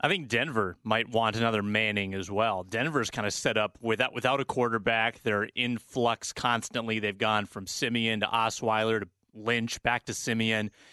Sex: male